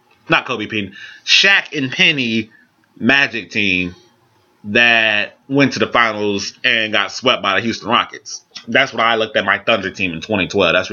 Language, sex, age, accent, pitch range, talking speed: English, male, 20-39, American, 115-145 Hz, 175 wpm